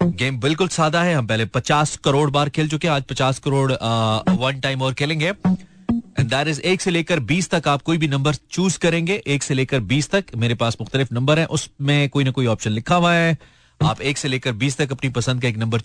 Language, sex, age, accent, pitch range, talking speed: Hindi, male, 30-49, native, 130-175 Hz, 220 wpm